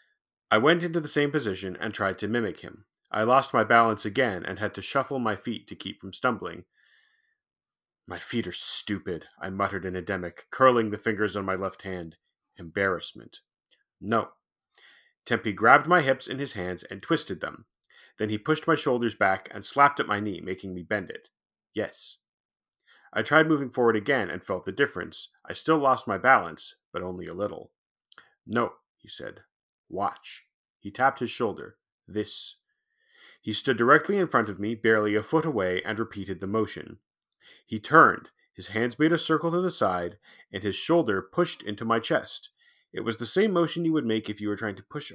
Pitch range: 105-150 Hz